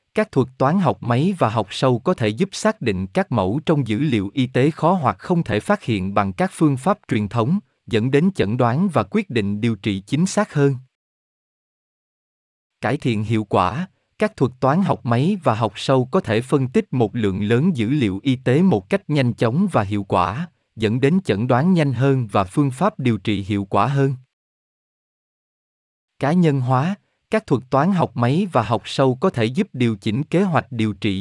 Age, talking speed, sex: 20-39, 210 wpm, male